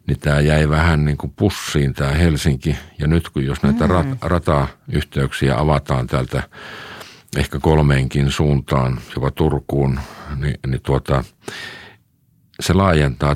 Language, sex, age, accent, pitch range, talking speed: Finnish, male, 50-69, native, 65-75 Hz, 130 wpm